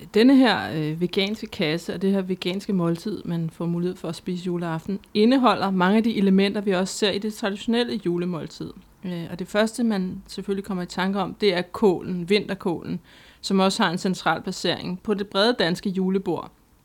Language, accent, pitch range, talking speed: Danish, native, 180-220 Hz, 185 wpm